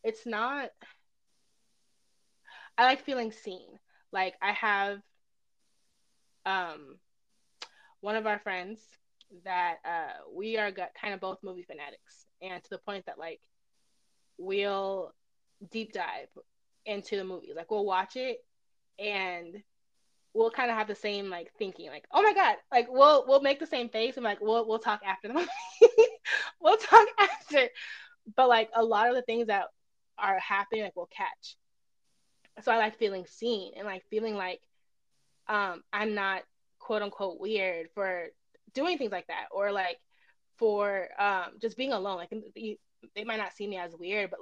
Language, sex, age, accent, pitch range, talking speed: English, female, 20-39, American, 190-235 Hz, 165 wpm